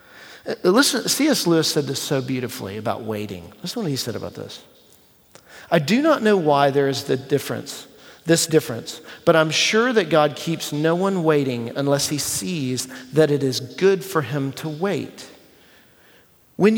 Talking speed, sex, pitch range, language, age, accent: 170 wpm, male, 140-180 Hz, English, 40-59, American